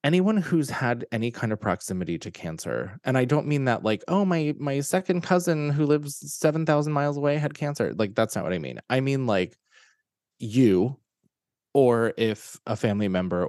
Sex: male